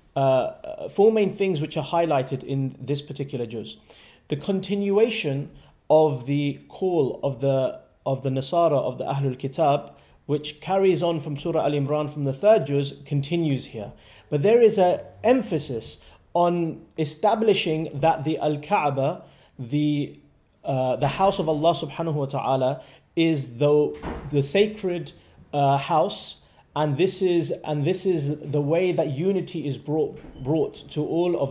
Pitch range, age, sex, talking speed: 140-185 Hz, 30-49, male, 150 wpm